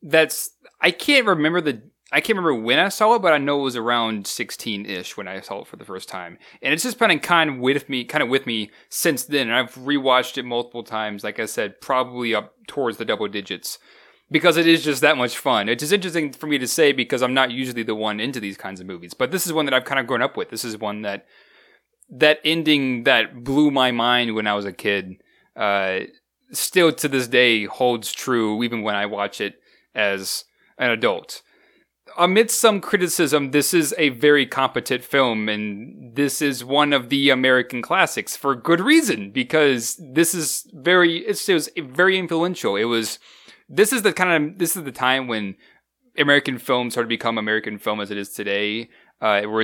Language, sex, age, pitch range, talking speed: English, male, 20-39, 115-160 Hz, 210 wpm